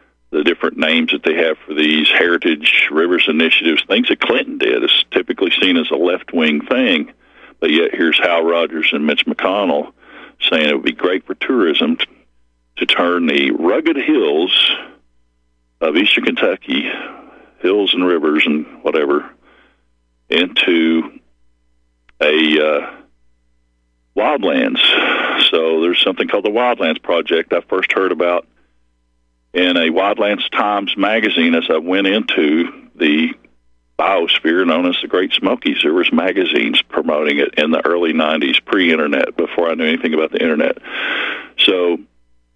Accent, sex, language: American, male, English